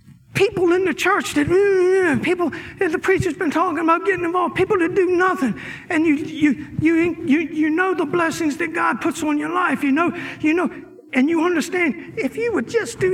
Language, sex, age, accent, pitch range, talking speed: English, male, 50-69, American, 295-360 Hz, 205 wpm